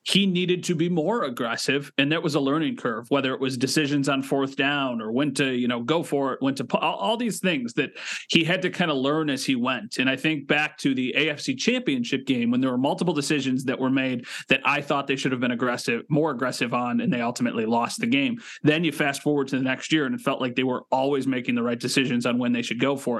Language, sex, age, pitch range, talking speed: English, male, 30-49, 130-180 Hz, 265 wpm